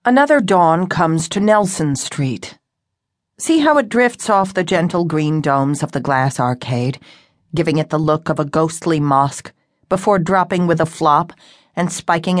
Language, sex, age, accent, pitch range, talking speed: English, female, 50-69, American, 145-185 Hz, 165 wpm